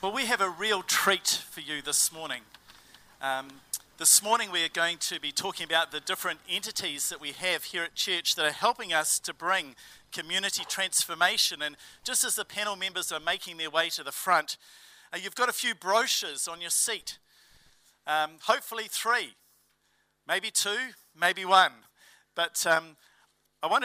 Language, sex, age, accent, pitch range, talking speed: English, male, 50-69, Australian, 160-200 Hz, 175 wpm